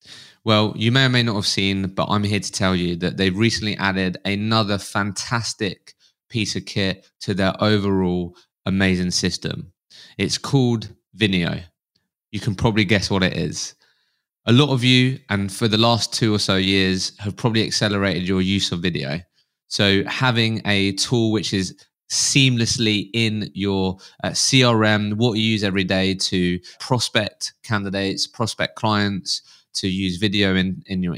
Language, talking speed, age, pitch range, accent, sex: English, 160 wpm, 20-39, 95-115 Hz, British, male